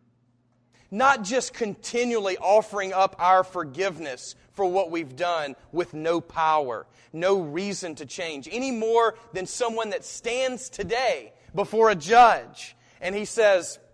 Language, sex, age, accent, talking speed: English, male, 30-49, American, 135 wpm